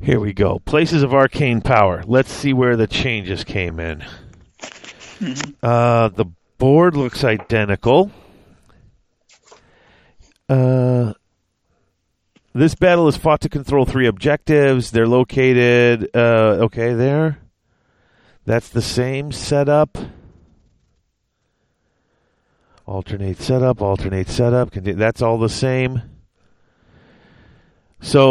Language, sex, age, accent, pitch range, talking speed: English, male, 40-59, American, 110-135 Hz, 100 wpm